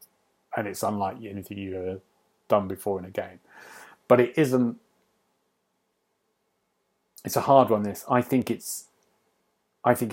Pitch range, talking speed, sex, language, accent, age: 100-125 Hz, 135 wpm, male, English, British, 30-49